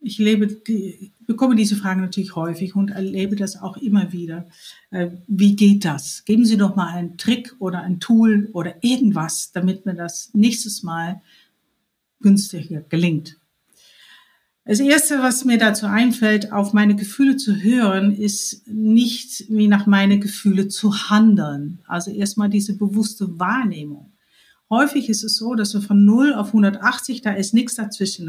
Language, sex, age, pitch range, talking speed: German, female, 50-69, 190-225 Hz, 155 wpm